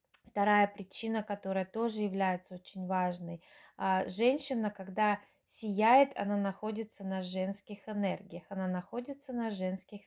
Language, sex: Russian, female